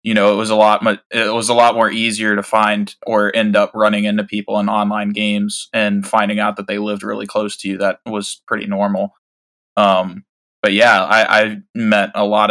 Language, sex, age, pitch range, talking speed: English, male, 20-39, 105-110 Hz, 220 wpm